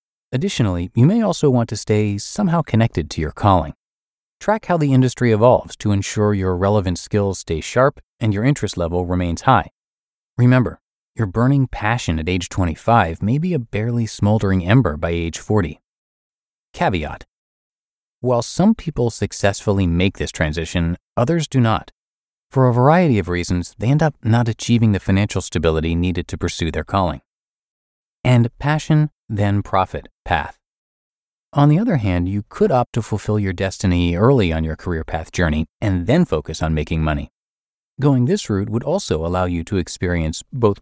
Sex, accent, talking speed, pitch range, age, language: male, American, 165 wpm, 90-125 Hz, 30-49, English